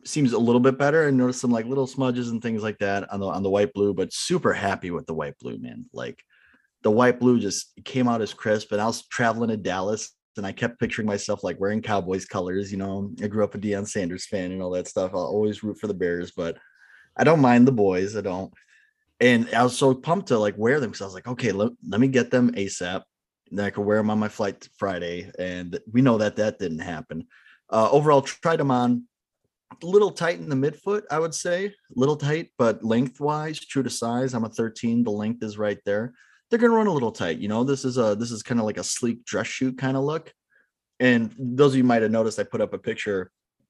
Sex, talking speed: male, 250 wpm